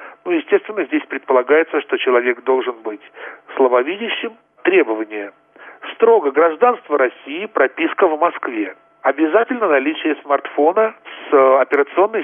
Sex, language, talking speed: male, Russian, 105 wpm